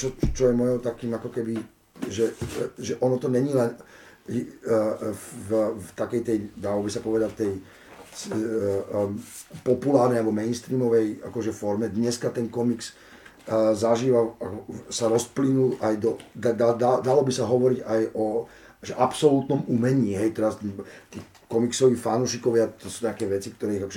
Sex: male